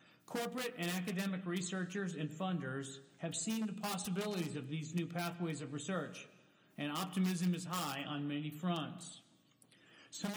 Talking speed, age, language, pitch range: 140 wpm, 50-69, English, 155-195 Hz